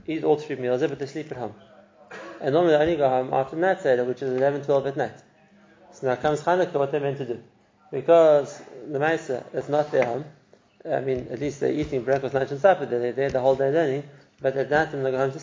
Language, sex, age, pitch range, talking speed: English, male, 20-39, 130-155 Hz, 245 wpm